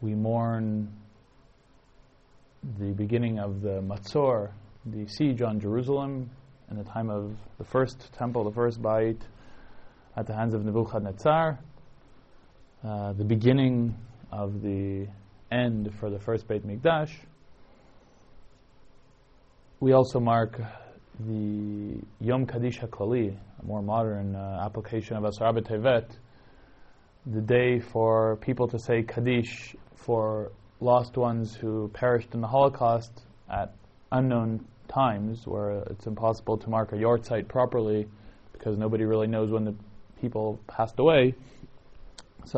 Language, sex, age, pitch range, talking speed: English, male, 20-39, 105-120 Hz, 125 wpm